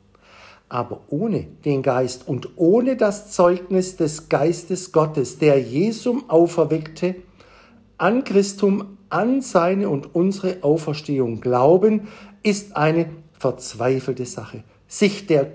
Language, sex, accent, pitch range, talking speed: German, male, German, 125-195 Hz, 110 wpm